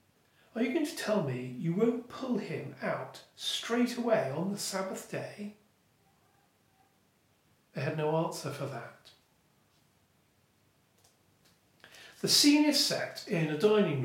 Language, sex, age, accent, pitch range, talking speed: English, male, 40-59, British, 140-220 Hz, 130 wpm